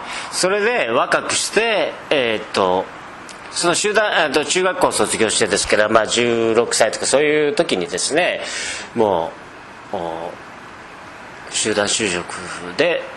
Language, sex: Japanese, male